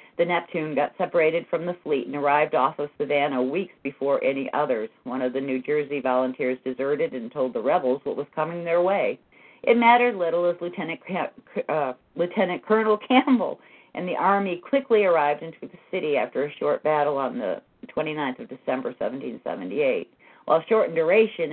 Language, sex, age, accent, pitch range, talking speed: English, female, 50-69, American, 145-215 Hz, 175 wpm